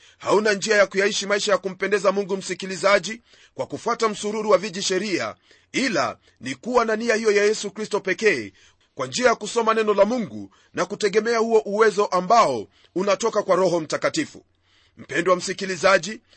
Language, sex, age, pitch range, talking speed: Swahili, male, 40-59, 195-220 Hz, 160 wpm